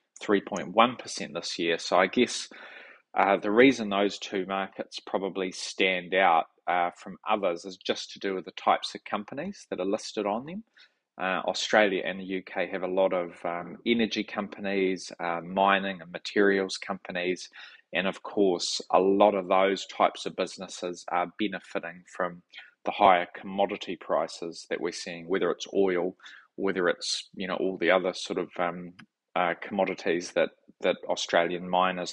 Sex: male